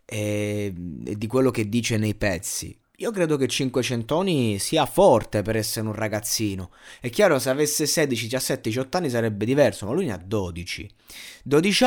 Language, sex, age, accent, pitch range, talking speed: Italian, male, 20-39, native, 110-145 Hz, 170 wpm